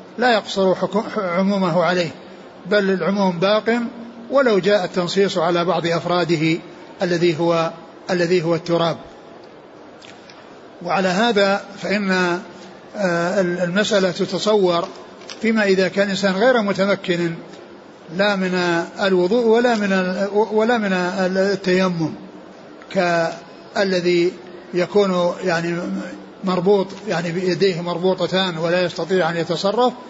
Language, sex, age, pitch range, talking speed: Arabic, male, 60-79, 175-210 Hz, 90 wpm